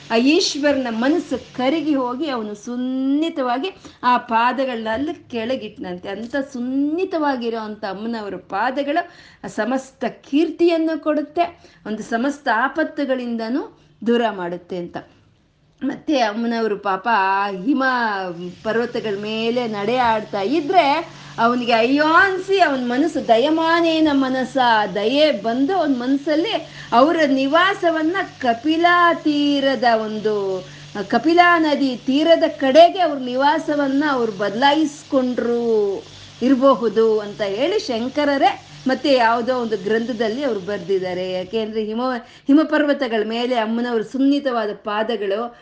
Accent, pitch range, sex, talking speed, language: native, 220-290 Hz, female, 90 wpm, Kannada